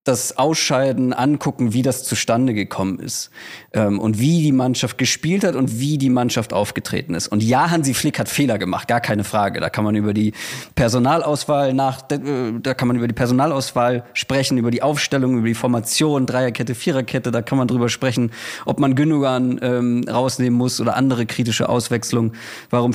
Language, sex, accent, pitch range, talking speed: German, male, German, 120-145 Hz, 180 wpm